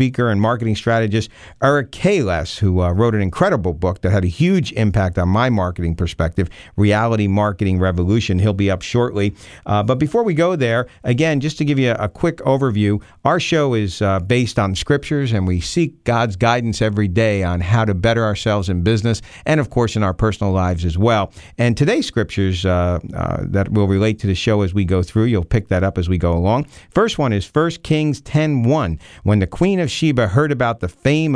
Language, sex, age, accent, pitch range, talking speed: English, male, 50-69, American, 95-130 Hz, 210 wpm